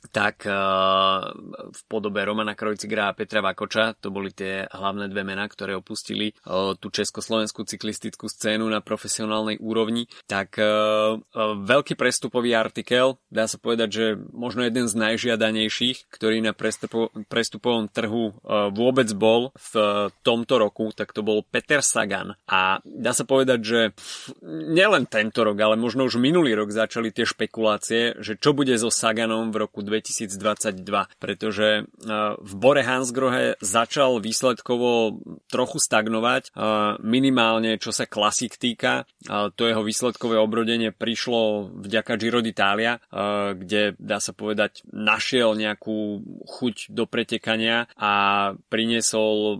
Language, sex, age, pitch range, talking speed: Slovak, male, 30-49, 105-115 Hz, 130 wpm